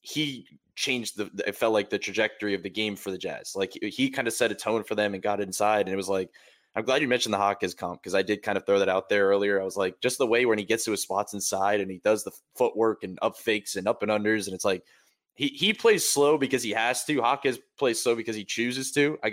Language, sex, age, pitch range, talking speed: English, male, 20-39, 105-130 Hz, 285 wpm